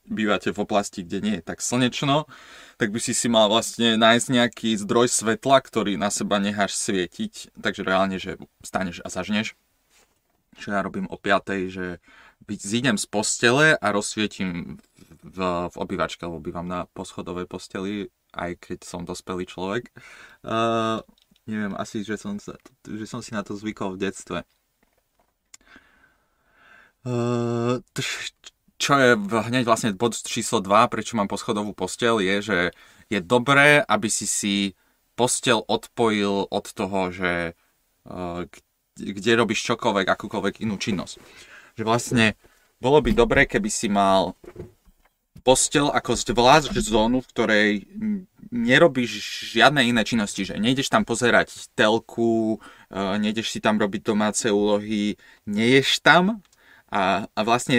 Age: 20-39